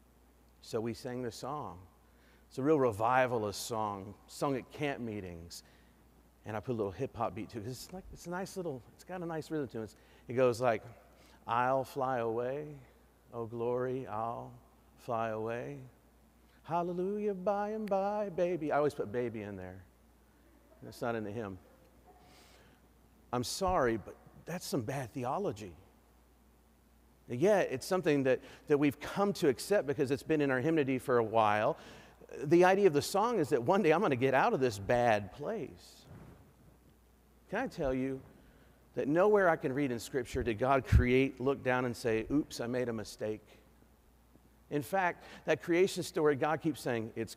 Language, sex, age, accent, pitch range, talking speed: English, male, 40-59, American, 110-150 Hz, 180 wpm